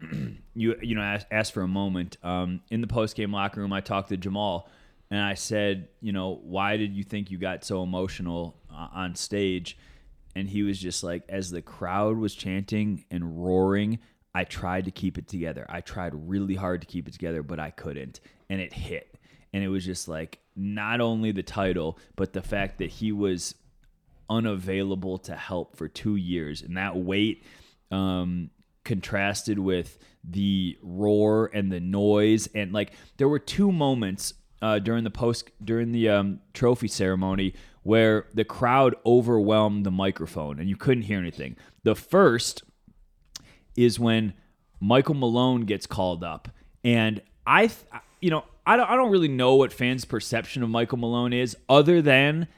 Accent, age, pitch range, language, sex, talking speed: American, 20-39, 95-115 Hz, English, male, 175 wpm